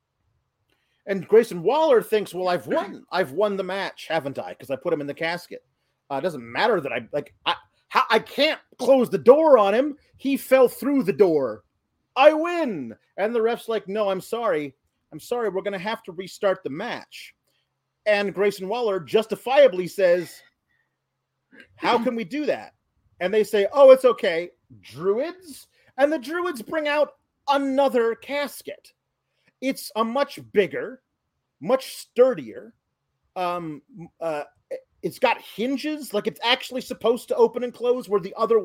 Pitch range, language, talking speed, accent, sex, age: 195-275 Hz, English, 165 wpm, American, male, 40-59